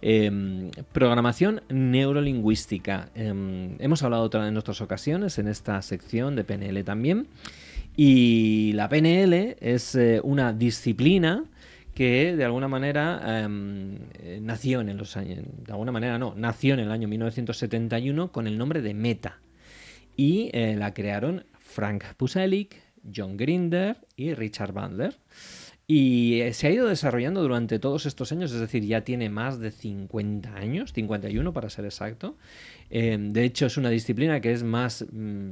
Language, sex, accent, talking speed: Spanish, male, Spanish, 145 wpm